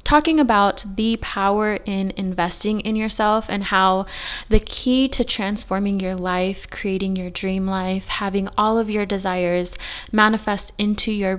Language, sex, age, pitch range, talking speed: English, female, 20-39, 190-220 Hz, 150 wpm